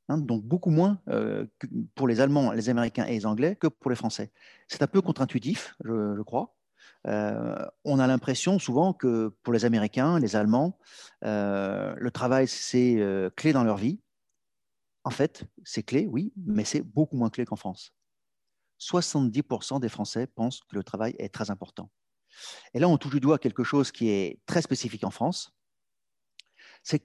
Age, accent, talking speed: 40-59, French, 165 wpm